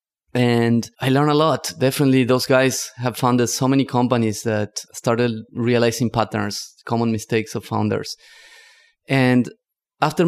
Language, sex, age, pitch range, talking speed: English, male, 20-39, 110-130 Hz, 135 wpm